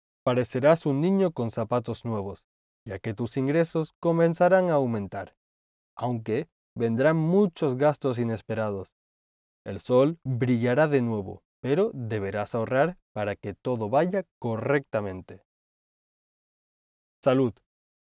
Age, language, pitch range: 20-39, Spanish, 105-150 Hz